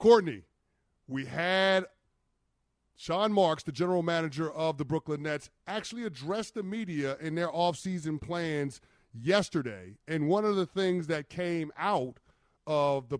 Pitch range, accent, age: 125-160 Hz, American, 30-49